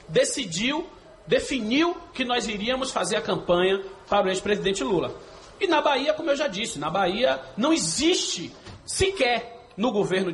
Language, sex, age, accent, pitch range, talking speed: Portuguese, male, 40-59, Brazilian, 205-300 Hz, 150 wpm